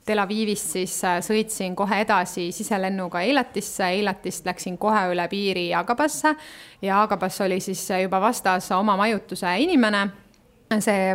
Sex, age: female, 30-49